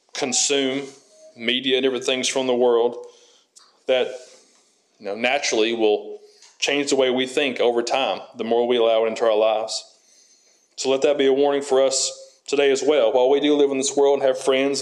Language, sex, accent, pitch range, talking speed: English, male, American, 130-145 Hz, 195 wpm